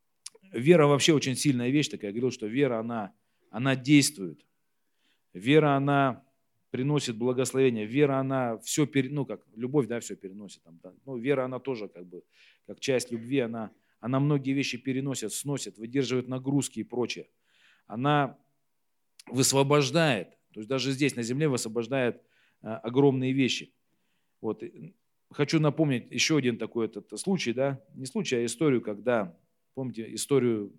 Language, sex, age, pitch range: Russian, male, 40-59, 110-135 Hz